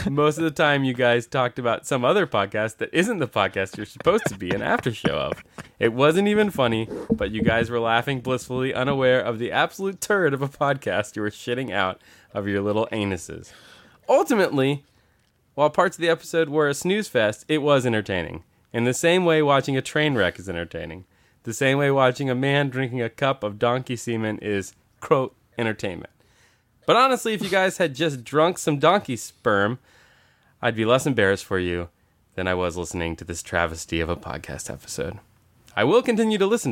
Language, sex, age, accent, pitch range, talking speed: English, male, 20-39, American, 100-140 Hz, 195 wpm